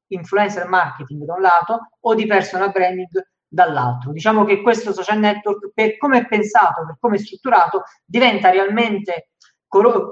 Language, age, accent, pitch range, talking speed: Italian, 40-59, native, 175-230 Hz, 155 wpm